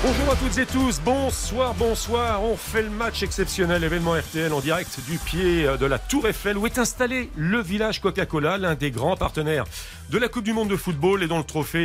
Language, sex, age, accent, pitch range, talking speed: French, male, 40-59, French, 140-205 Hz, 220 wpm